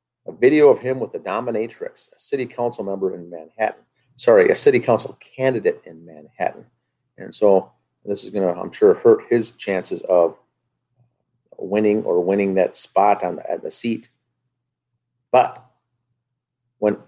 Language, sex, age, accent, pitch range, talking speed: English, male, 40-59, American, 105-145 Hz, 150 wpm